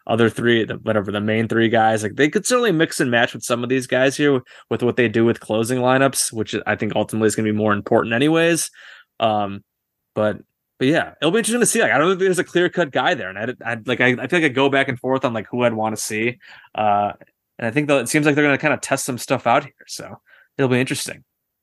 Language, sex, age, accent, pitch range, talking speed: English, male, 20-39, American, 110-140 Hz, 280 wpm